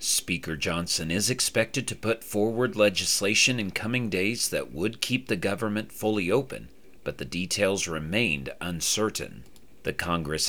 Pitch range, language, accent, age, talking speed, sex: 85-115 Hz, English, American, 40-59, 145 wpm, male